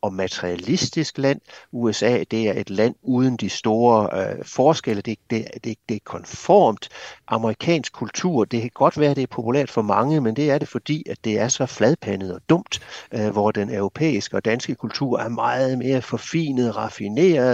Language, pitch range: Danish, 110-140 Hz